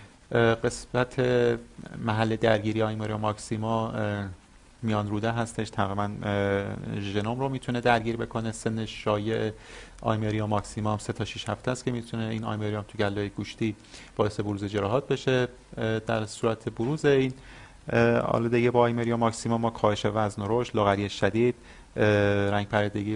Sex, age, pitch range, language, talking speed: male, 30-49, 100-115 Hz, Persian, 130 wpm